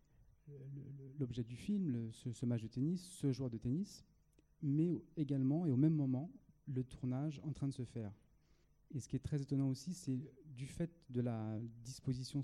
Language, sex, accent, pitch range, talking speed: English, male, French, 120-145 Hz, 200 wpm